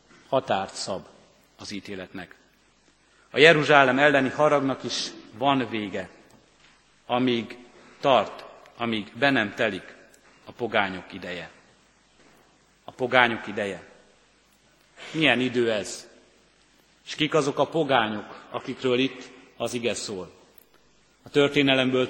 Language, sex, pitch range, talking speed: Hungarian, male, 115-140 Hz, 105 wpm